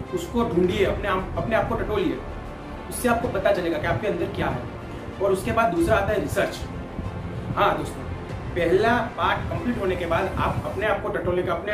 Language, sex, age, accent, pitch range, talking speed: Hindi, male, 30-49, native, 175-220 Hz, 200 wpm